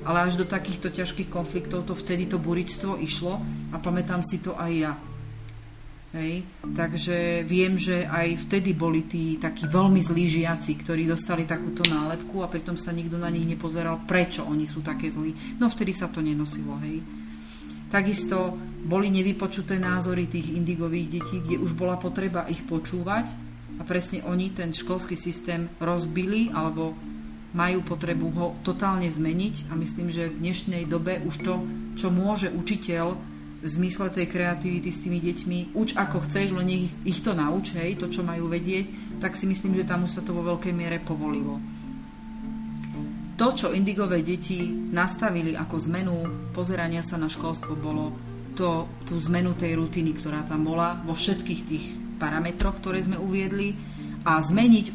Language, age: Slovak, 40-59